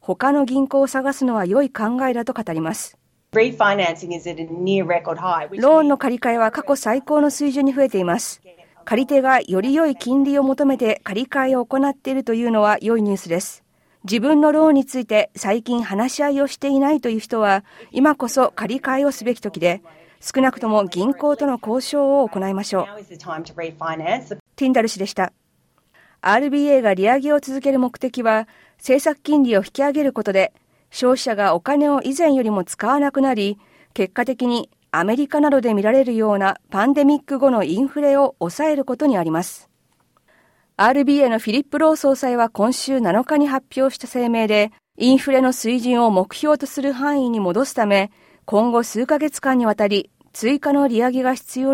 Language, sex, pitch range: Japanese, female, 210-275 Hz